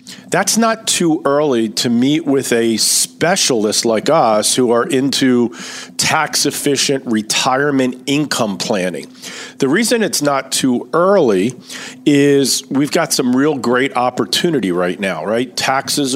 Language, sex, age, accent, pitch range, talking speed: English, male, 40-59, American, 125-180 Hz, 135 wpm